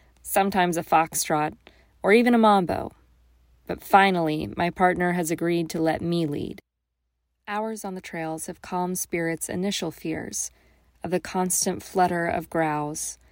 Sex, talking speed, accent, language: female, 145 wpm, American, English